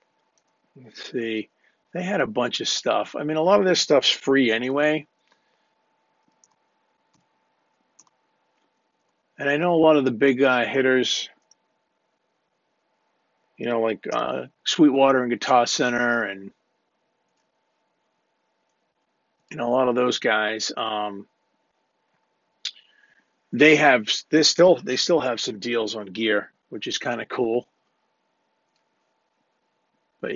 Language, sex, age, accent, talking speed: English, male, 50-69, American, 115 wpm